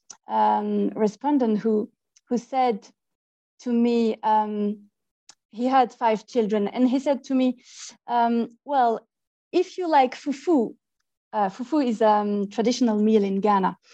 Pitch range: 220-270 Hz